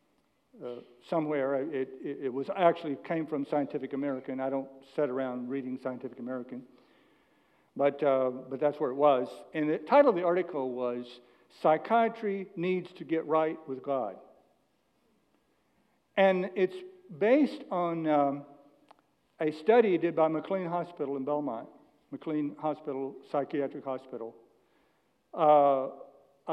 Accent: American